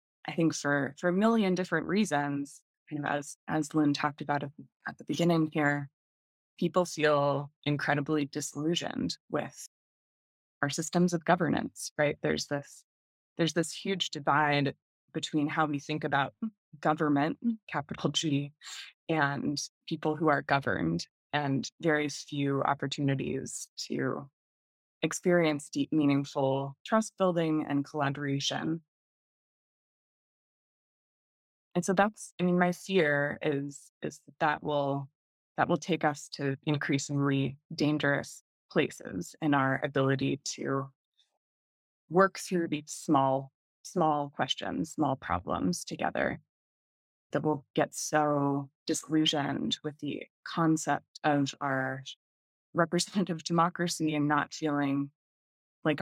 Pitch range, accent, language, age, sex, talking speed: 140-160 Hz, American, English, 20-39, female, 115 wpm